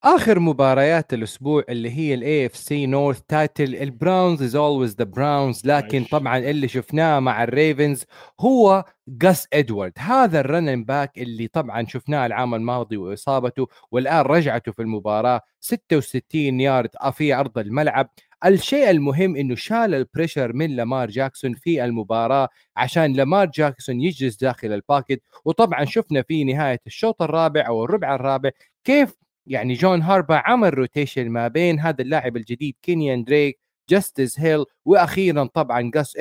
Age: 30-49